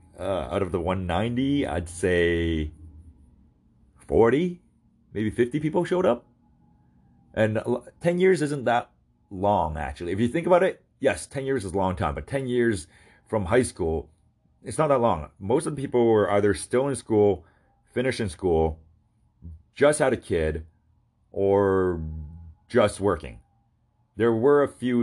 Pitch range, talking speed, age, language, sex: 80-120 Hz, 155 wpm, 30-49, English, male